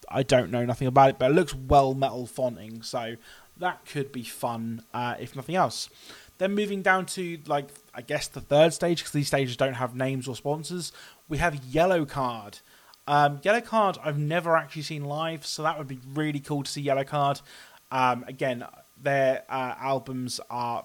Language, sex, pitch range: English, male, 125-155 Hz